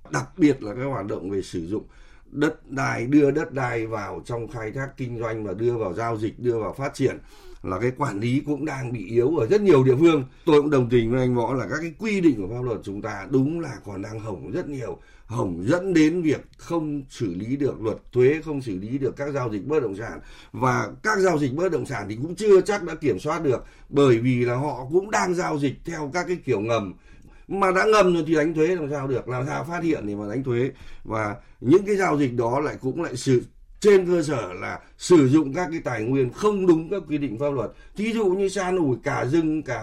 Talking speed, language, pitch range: 250 wpm, Vietnamese, 125-165 Hz